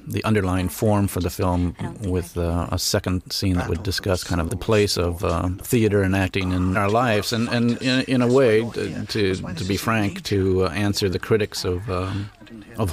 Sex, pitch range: male, 90-105 Hz